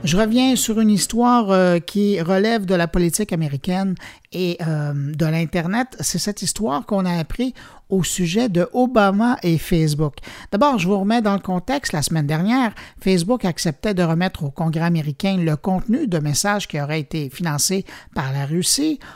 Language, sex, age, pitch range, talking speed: French, male, 50-69, 165-220 Hz, 175 wpm